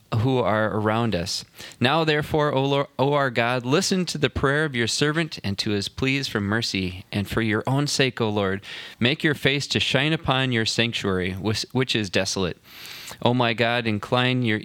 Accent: American